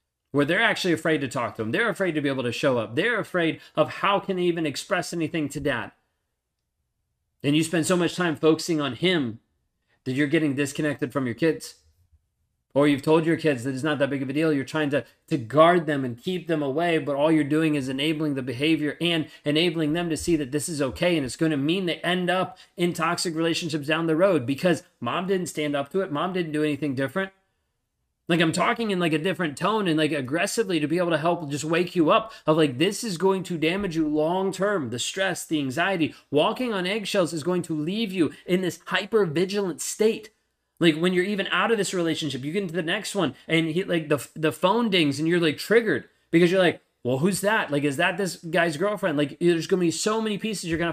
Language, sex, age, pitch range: English, male, 30-49, 150-180 Hz